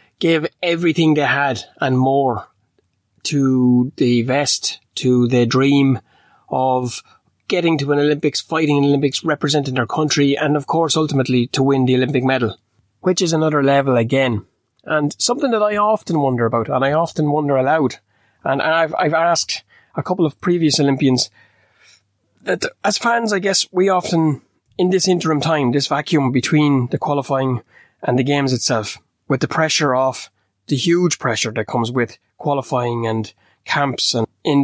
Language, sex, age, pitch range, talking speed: English, male, 30-49, 120-150 Hz, 160 wpm